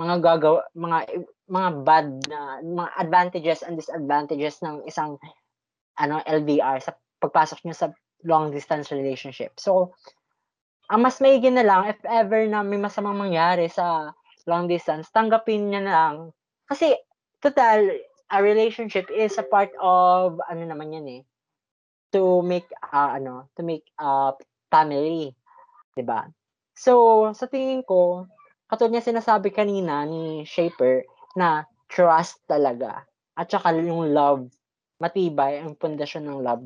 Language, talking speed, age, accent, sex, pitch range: Filipino, 135 wpm, 20-39, native, female, 145-200 Hz